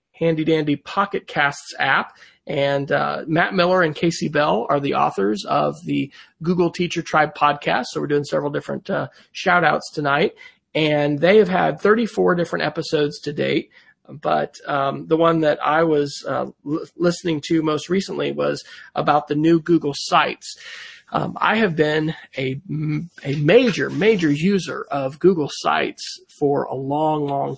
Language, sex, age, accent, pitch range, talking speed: English, male, 30-49, American, 145-175 Hz, 160 wpm